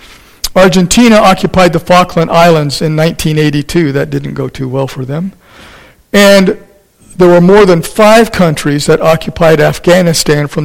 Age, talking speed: 50-69, 140 wpm